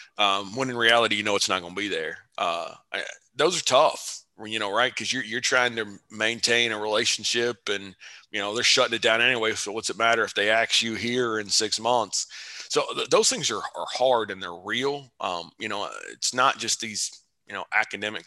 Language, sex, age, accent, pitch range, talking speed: English, male, 30-49, American, 105-120 Hz, 225 wpm